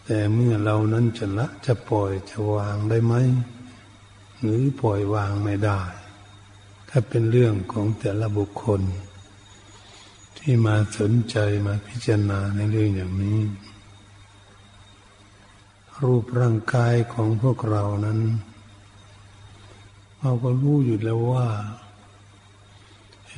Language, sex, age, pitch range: Thai, male, 60-79, 100-115 Hz